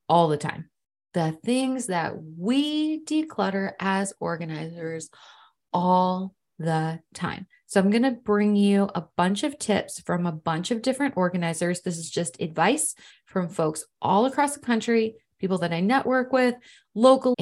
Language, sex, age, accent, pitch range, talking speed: English, female, 20-39, American, 170-225 Hz, 155 wpm